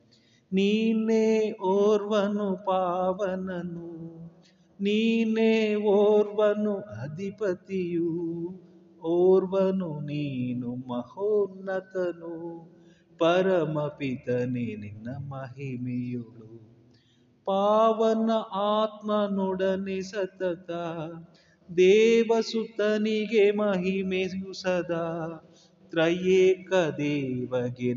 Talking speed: 40 wpm